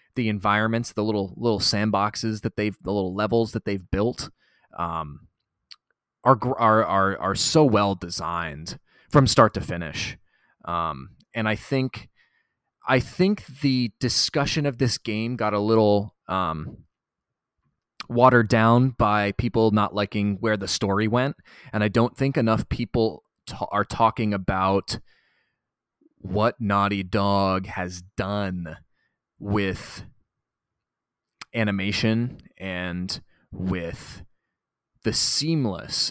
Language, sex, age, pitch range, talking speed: English, male, 20-39, 95-120 Hz, 120 wpm